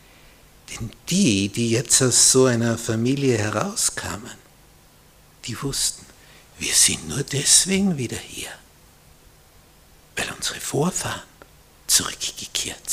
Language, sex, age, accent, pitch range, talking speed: German, male, 60-79, Austrian, 110-140 Hz, 95 wpm